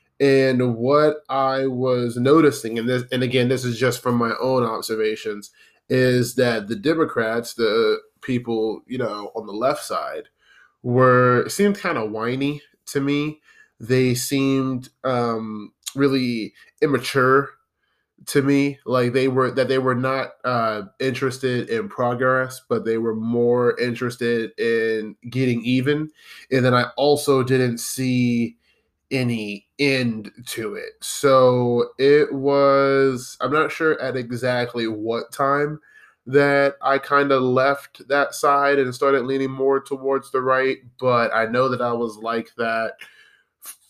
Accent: American